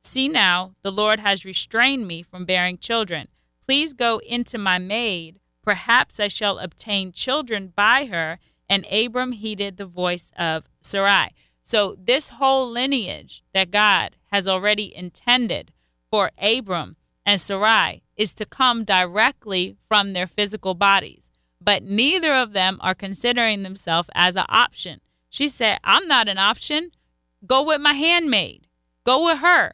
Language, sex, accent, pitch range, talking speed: English, female, American, 195-245 Hz, 145 wpm